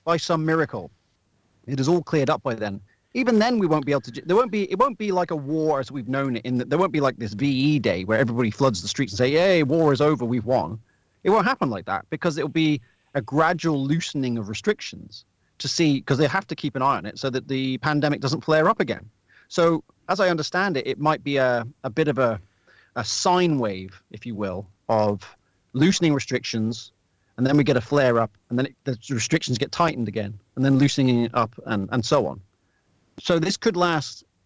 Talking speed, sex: 230 wpm, male